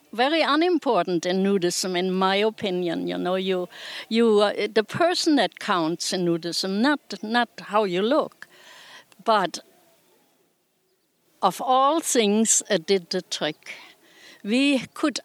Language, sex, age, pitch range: English, female, 60-79, 190-245 Hz